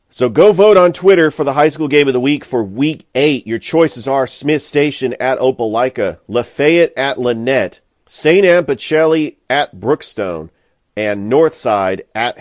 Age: 40-59